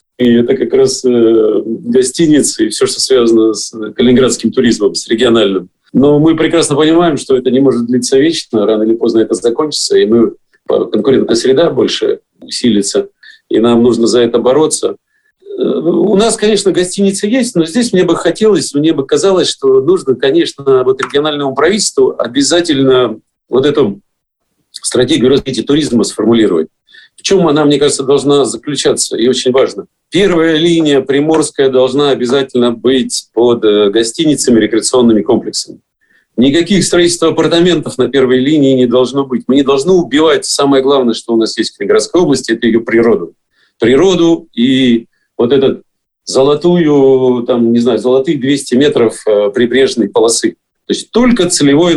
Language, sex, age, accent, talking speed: Russian, male, 40-59, native, 150 wpm